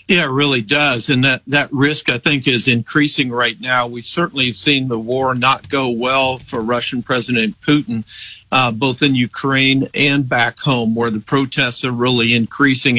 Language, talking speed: English, 180 wpm